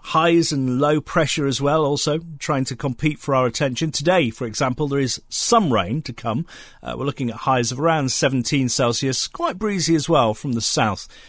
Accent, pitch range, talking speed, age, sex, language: British, 115-155 Hz, 200 wpm, 40-59, male, English